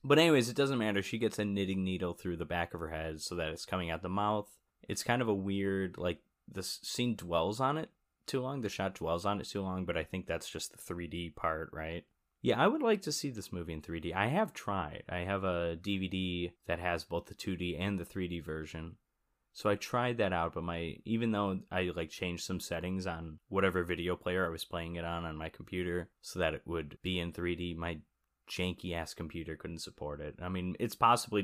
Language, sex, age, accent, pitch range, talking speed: English, male, 20-39, American, 85-100 Hz, 235 wpm